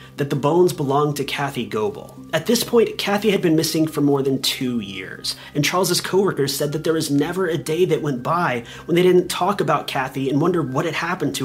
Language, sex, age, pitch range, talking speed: English, male, 30-49, 135-185 Hz, 230 wpm